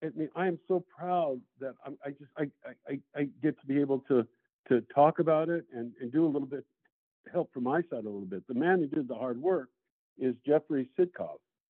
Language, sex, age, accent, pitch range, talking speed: English, male, 50-69, American, 130-160 Hz, 230 wpm